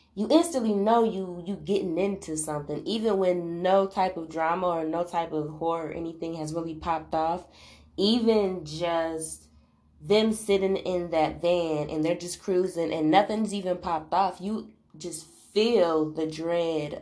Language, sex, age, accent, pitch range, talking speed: English, female, 20-39, American, 155-185 Hz, 160 wpm